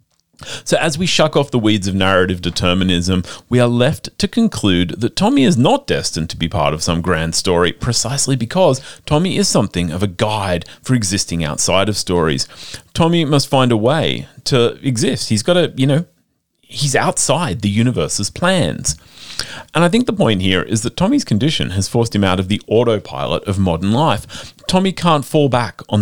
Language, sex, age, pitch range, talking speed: English, male, 30-49, 105-155 Hz, 190 wpm